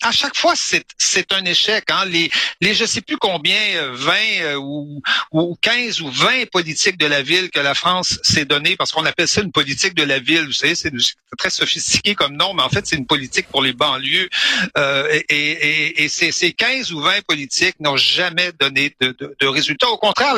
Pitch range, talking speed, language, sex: 145-185 Hz, 220 wpm, French, male